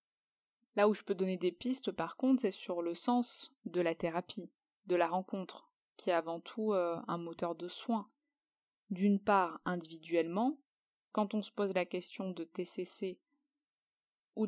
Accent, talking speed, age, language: French, 165 wpm, 20-39, French